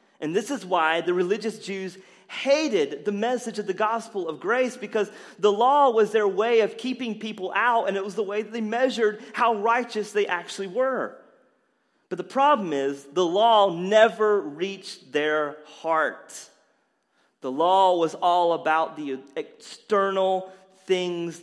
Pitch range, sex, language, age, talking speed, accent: 155-220 Hz, male, English, 30-49, 155 wpm, American